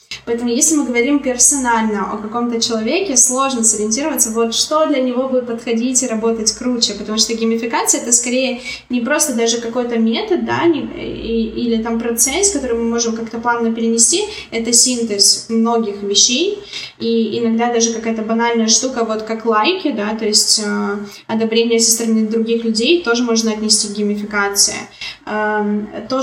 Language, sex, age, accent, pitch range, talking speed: Russian, female, 20-39, native, 225-250 Hz, 155 wpm